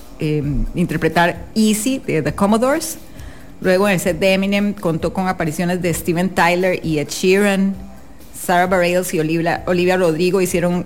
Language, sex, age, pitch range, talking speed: English, female, 30-49, 160-195 Hz, 155 wpm